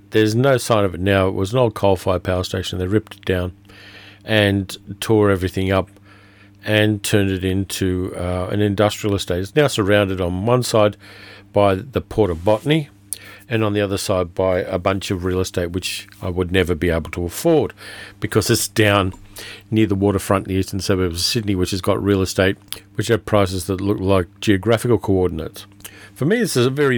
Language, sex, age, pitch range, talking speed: English, male, 50-69, 95-110 Hz, 200 wpm